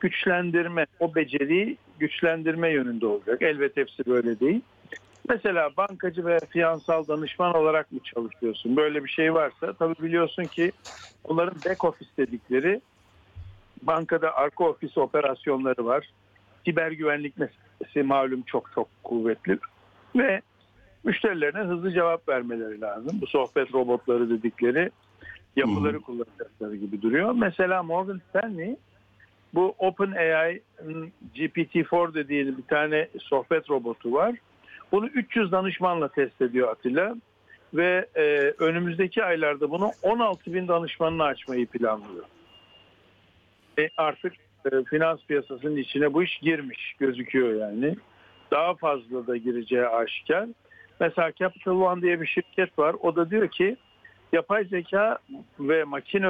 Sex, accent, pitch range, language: male, native, 130-180 Hz, Turkish